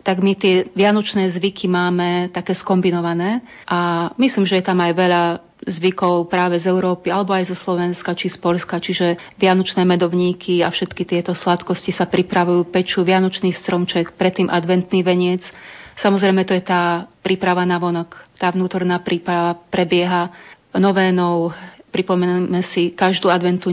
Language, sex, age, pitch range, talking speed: Slovak, female, 30-49, 175-190 Hz, 145 wpm